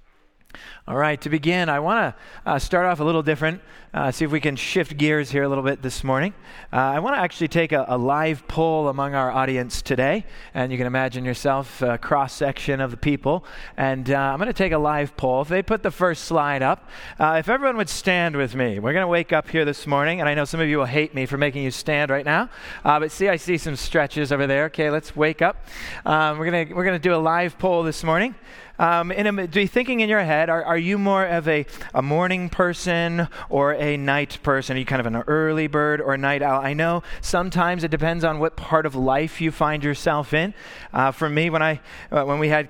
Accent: American